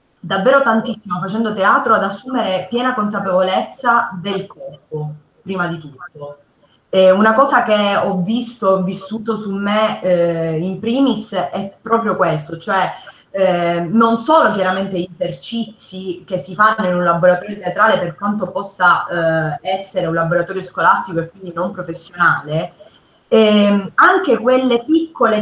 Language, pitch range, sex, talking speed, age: Italian, 175-225 Hz, female, 140 wpm, 20-39